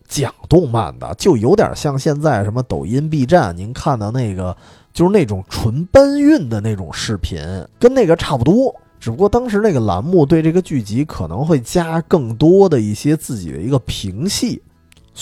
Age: 20-39